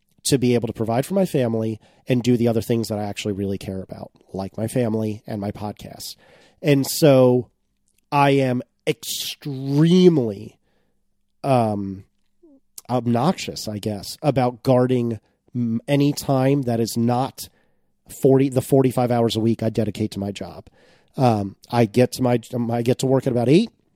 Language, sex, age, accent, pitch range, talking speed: English, male, 30-49, American, 110-145 Hz, 160 wpm